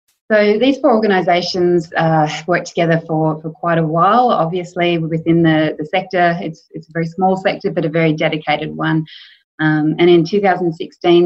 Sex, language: female, English